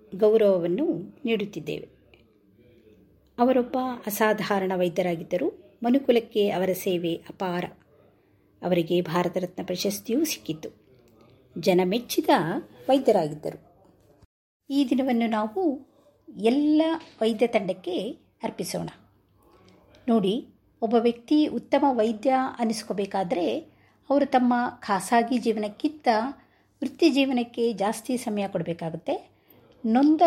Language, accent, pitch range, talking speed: Kannada, native, 195-270 Hz, 80 wpm